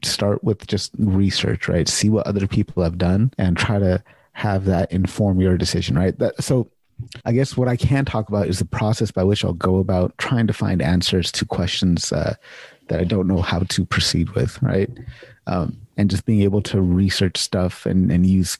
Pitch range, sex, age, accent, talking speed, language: 90-110 Hz, male, 30-49, American, 205 wpm, English